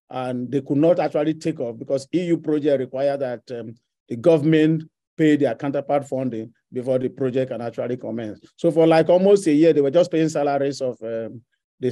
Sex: male